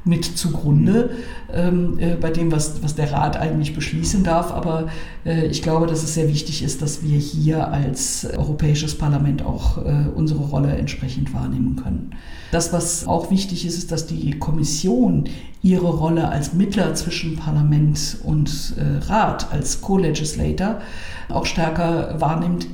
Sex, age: female, 50-69